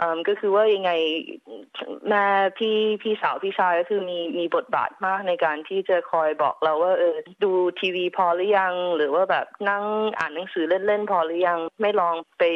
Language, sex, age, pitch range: Thai, female, 20-39, 165-200 Hz